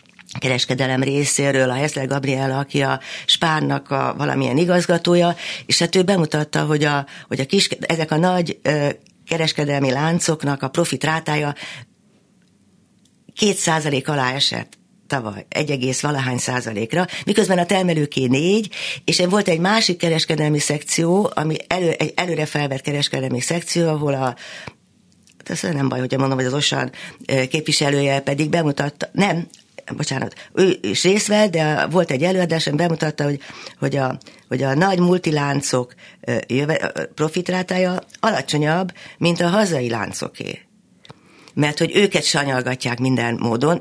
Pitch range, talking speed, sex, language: 130-170 Hz, 130 wpm, female, Hungarian